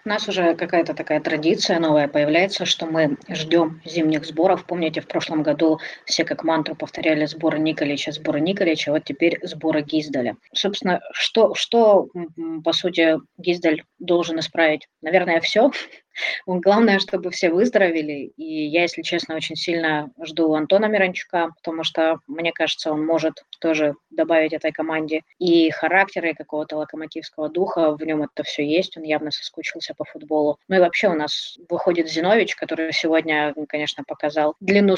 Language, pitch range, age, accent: Russian, 155-175 Hz, 20-39, native